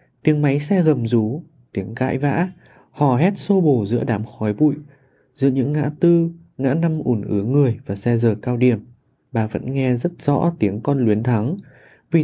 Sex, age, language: male, 20-39, Vietnamese